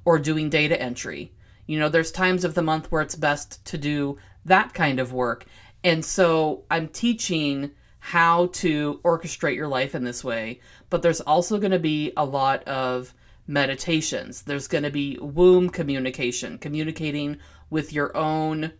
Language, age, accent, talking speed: English, 30-49, American, 165 wpm